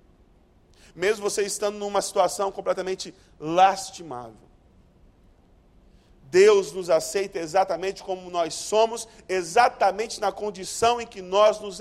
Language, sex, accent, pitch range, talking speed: Portuguese, male, Brazilian, 160-210 Hz, 105 wpm